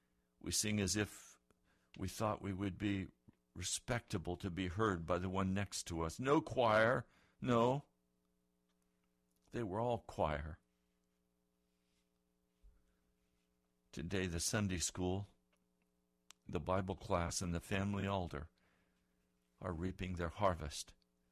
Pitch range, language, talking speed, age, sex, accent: 80-125 Hz, English, 115 wpm, 60-79, male, American